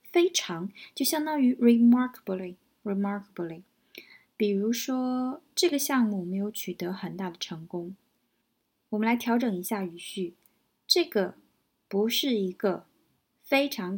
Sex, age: female, 20-39